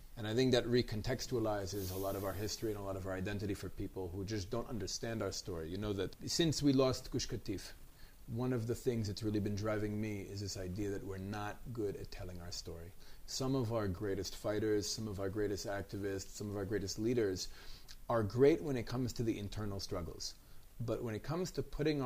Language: English